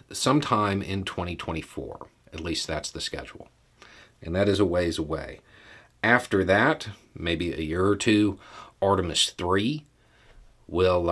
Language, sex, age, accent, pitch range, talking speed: English, male, 40-59, American, 80-100 Hz, 130 wpm